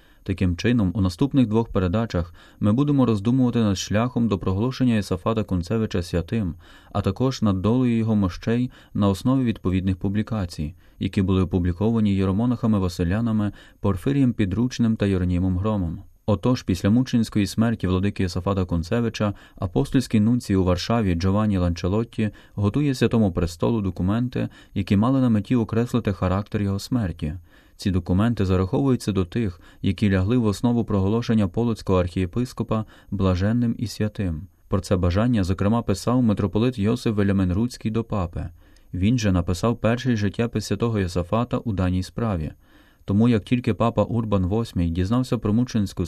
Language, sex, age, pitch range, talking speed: Ukrainian, male, 30-49, 95-115 Hz, 135 wpm